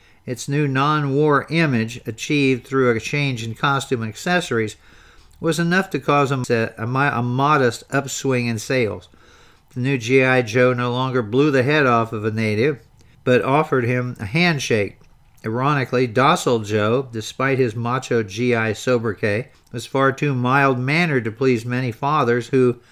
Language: English